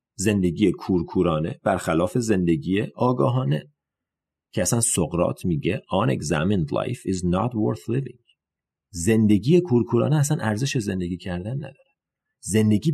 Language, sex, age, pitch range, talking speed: Persian, male, 40-59, 95-140 Hz, 100 wpm